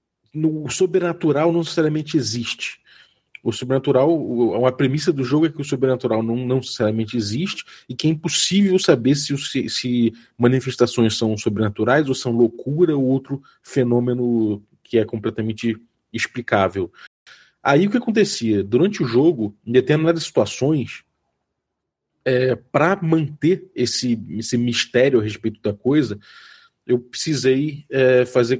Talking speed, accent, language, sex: 135 wpm, Brazilian, Portuguese, male